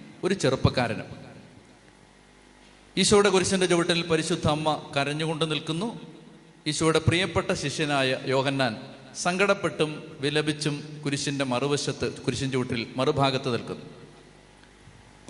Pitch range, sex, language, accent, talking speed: 140-180 Hz, male, Malayalam, native, 85 wpm